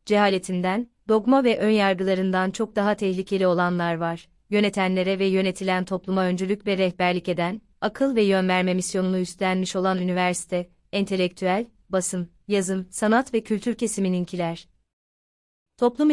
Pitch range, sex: 180-215 Hz, female